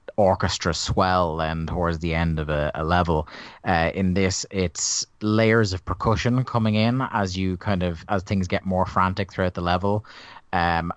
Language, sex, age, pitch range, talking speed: English, male, 30-49, 85-100 Hz, 175 wpm